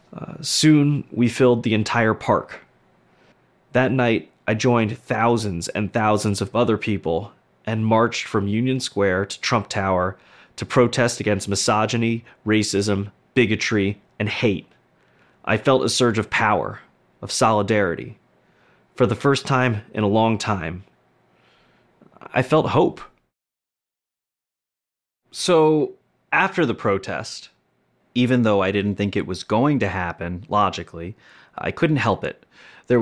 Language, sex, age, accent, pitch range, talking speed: English, male, 30-49, American, 100-125 Hz, 130 wpm